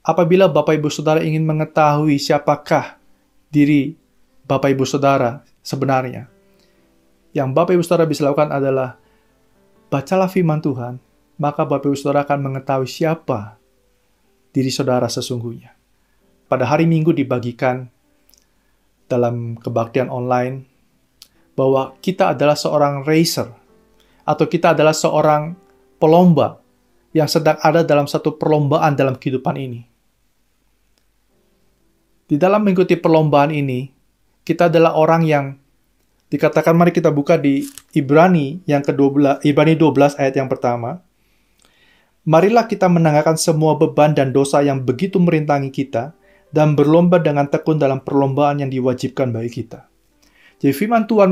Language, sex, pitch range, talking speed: Indonesian, male, 135-170 Hz, 115 wpm